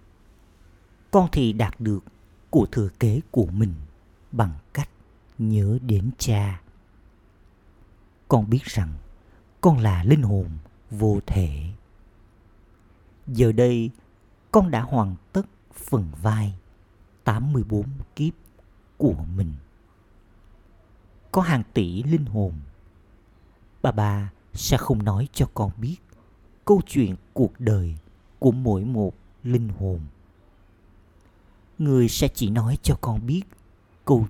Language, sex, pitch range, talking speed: Vietnamese, male, 95-120 Hz, 115 wpm